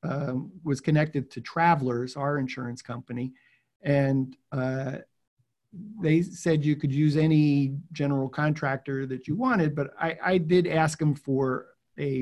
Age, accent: 50-69, American